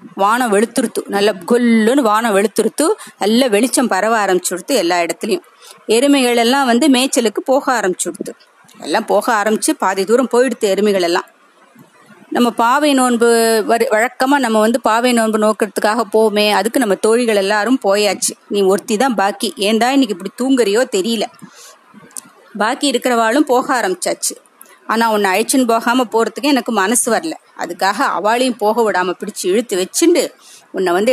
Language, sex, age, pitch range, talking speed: Tamil, female, 30-49, 205-255 Hz, 135 wpm